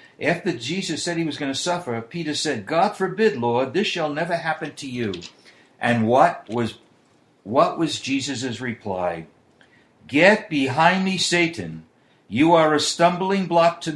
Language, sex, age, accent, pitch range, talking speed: English, male, 60-79, American, 120-175 Hz, 155 wpm